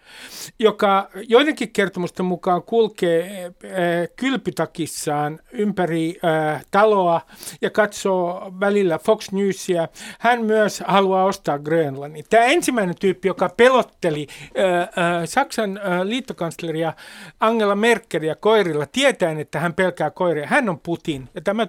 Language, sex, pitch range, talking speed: Finnish, male, 165-210 Hz, 105 wpm